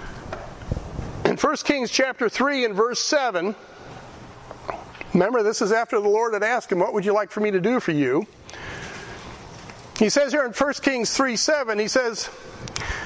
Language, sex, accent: English, male, American